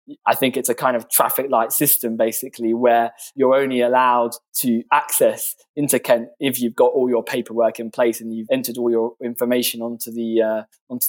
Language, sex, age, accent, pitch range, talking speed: English, male, 20-39, British, 120-155 Hz, 190 wpm